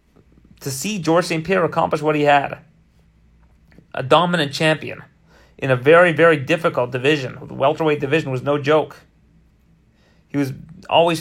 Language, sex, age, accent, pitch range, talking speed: English, male, 30-49, American, 140-175 Hz, 145 wpm